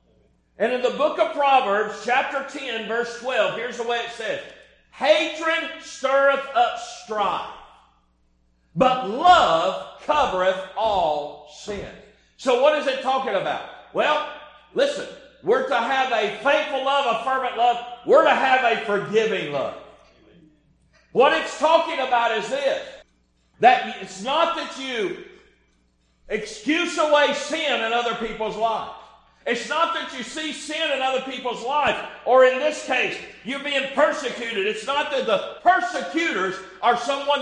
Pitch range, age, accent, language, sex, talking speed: 235-310 Hz, 50-69, American, English, male, 145 wpm